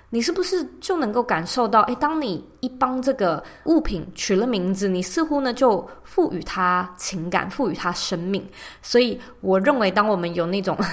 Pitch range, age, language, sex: 185-275 Hz, 20-39, Chinese, female